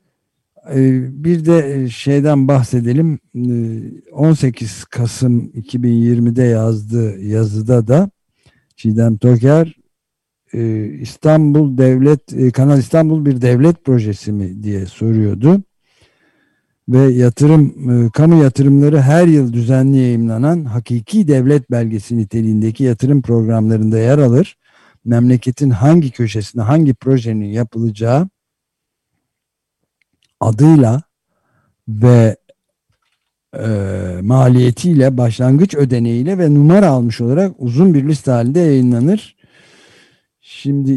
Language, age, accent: Turkish, 50-69, native